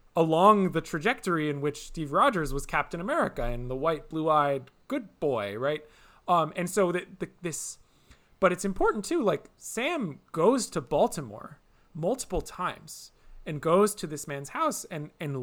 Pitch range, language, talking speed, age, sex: 135-180 Hz, English, 165 wpm, 30-49, male